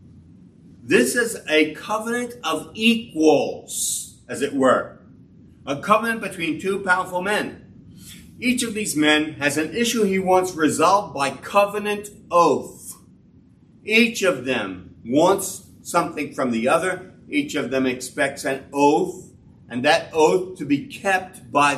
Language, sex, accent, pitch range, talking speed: English, male, American, 120-195 Hz, 135 wpm